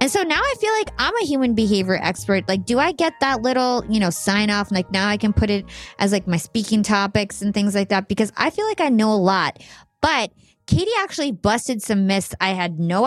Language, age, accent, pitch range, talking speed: English, 20-39, American, 185-245 Hz, 245 wpm